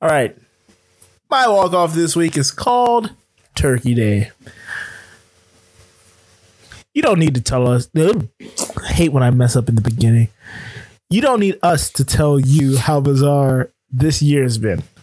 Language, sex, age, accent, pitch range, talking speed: English, male, 20-39, American, 120-145 Hz, 150 wpm